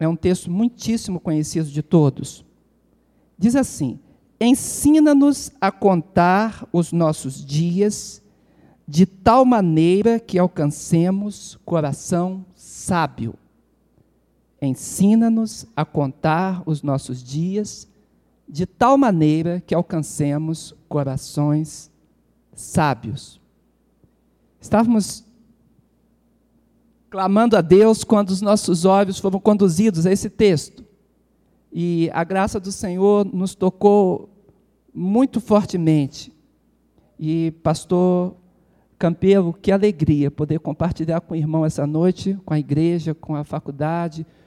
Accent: Brazilian